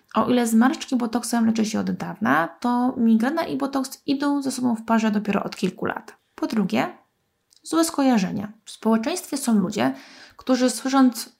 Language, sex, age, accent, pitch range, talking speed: Polish, female, 20-39, native, 205-265 Hz, 165 wpm